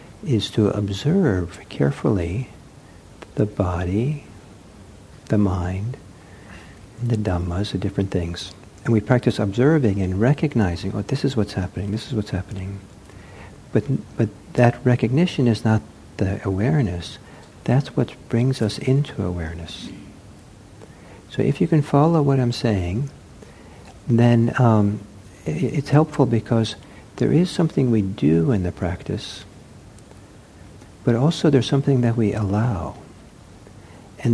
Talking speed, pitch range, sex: 125 wpm, 95-120 Hz, male